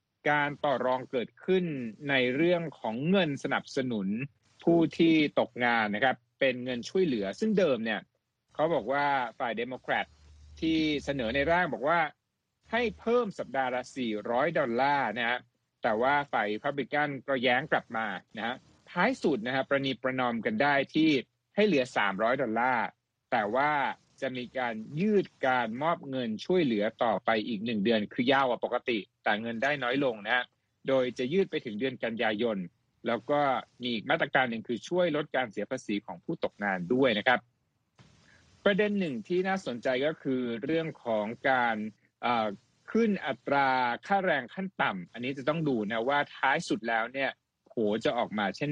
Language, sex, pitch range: Thai, male, 120-165 Hz